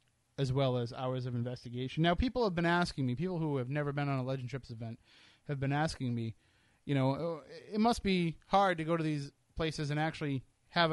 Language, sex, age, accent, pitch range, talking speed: English, male, 30-49, American, 130-160 Hz, 220 wpm